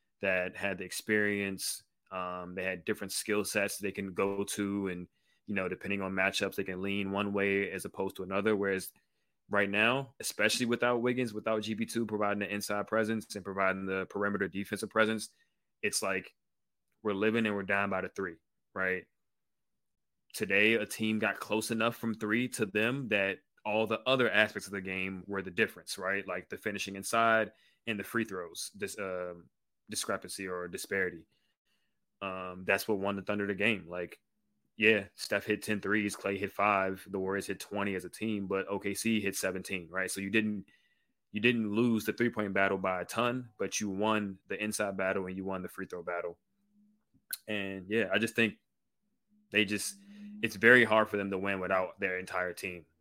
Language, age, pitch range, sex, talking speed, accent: English, 20-39, 95-110 Hz, male, 190 wpm, American